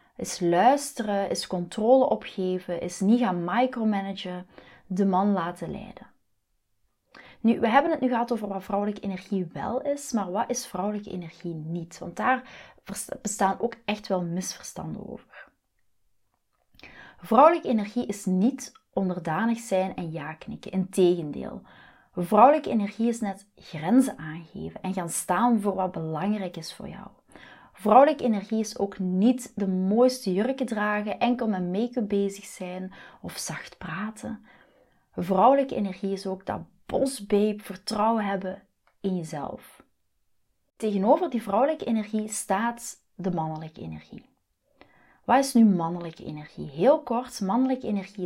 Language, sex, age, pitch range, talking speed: Dutch, female, 30-49, 185-235 Hz, 135 wpm